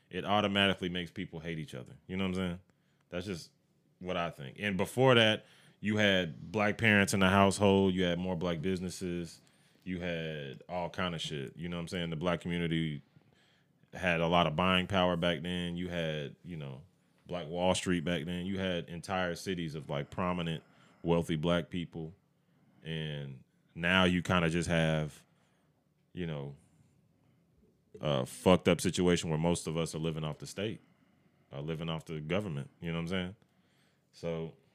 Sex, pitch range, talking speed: male, 80-95 Hz, 185 wpm